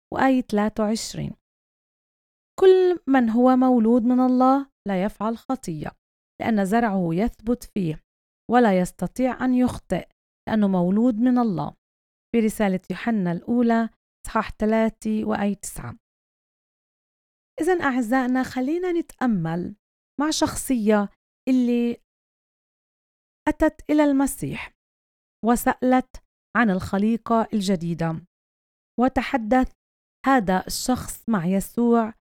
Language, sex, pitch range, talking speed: Arabic, female, 210-265 Hz, 90 wpm